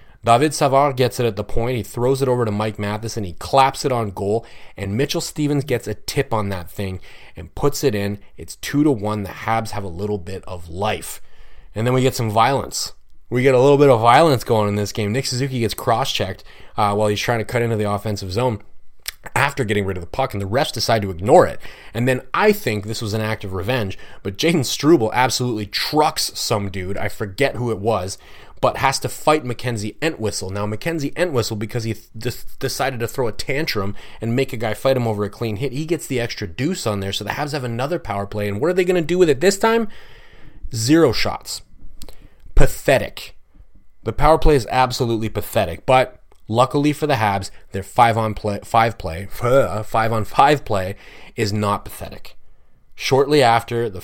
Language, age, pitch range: English, 30-49, 105-130 Hz